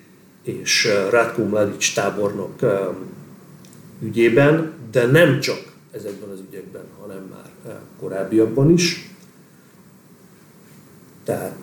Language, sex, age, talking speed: Hungarian, male, 50-69, 75 wpm